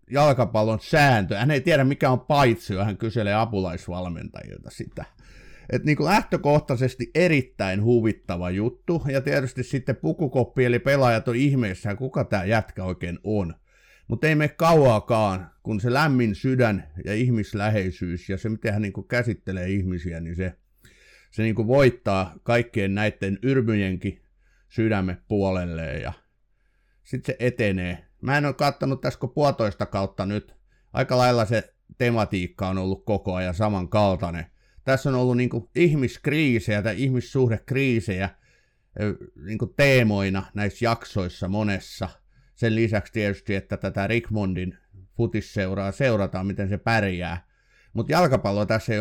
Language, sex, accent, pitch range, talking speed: Finnish, male, native, 95-125 Hz, 130 wpm